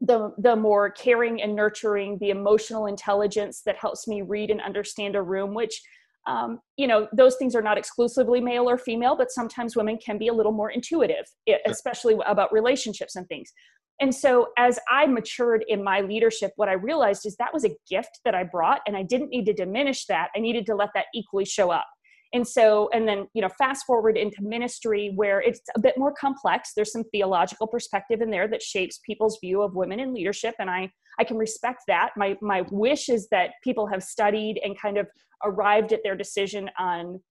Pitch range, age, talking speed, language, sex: 205-255 Hz, 30-49, 205 wpm, English, female